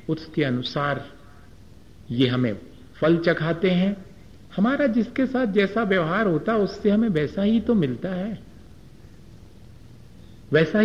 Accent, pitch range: native, 140-200 Hz